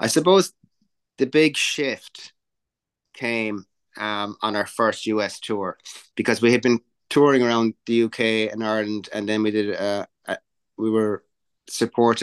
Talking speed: 150 wpm